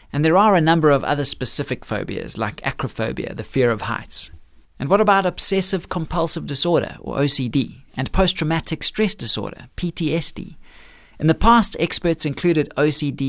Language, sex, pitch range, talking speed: English, male, 120-175 Hz, 150 wpm